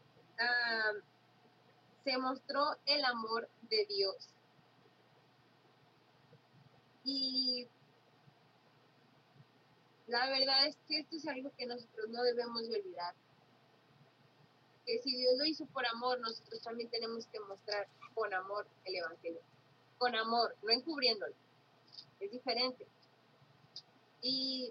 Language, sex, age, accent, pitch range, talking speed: Spanish, female, 20-39, Mexican, 210-280 Hz, 105 wpm